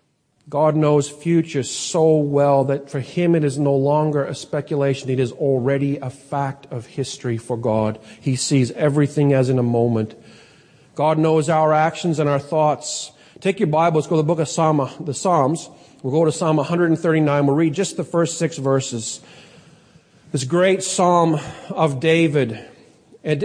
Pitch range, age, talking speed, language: 135-165 Hz, 40-59, 165 wpm, English